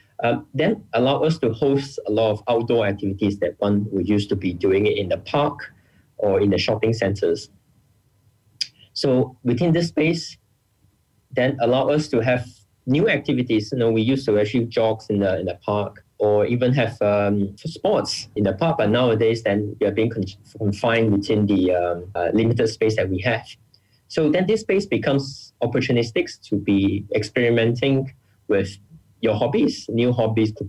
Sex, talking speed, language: male, 175 wpm, English